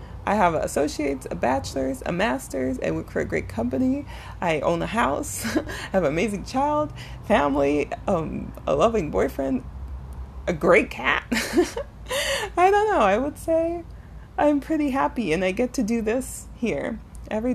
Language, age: English, 30-49